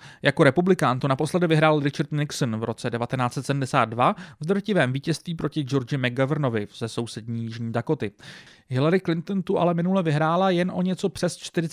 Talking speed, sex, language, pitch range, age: 160 wpm, male, English, 130-180 Hz, 30-49